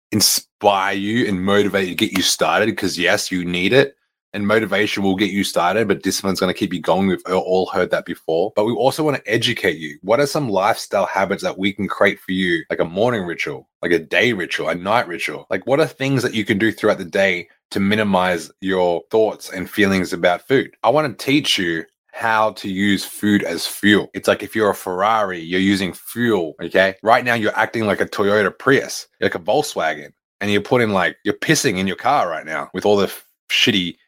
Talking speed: 225 wpm